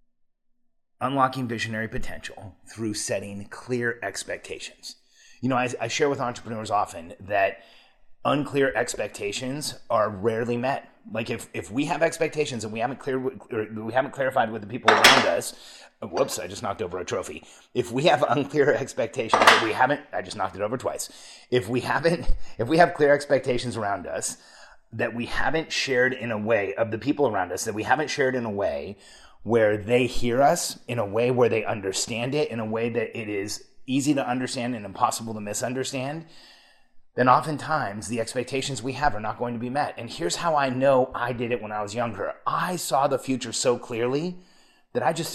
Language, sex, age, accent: English, male, 30-49, American